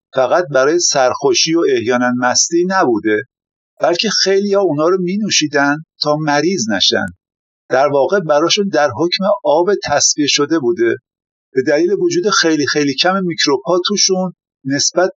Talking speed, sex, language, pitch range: 135 wpm, male, Persian, 135-195 Hz